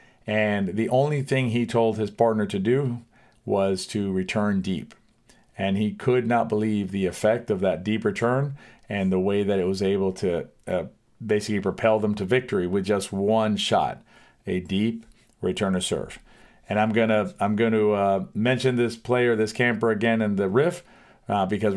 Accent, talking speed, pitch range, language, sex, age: American, 185 wpm, 105-125 Hz, English, male, 50-69